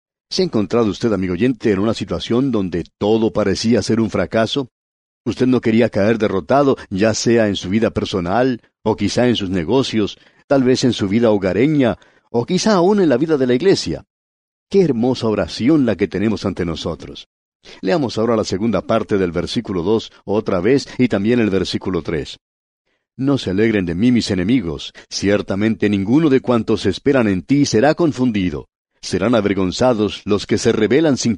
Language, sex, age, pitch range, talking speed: English, male, 50-69, 95-125 Hz, 175 wpm